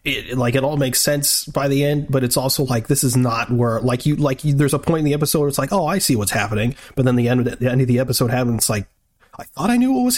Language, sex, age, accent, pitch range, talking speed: English, male, 30-49, American, 115-145 Hz, 320 wpm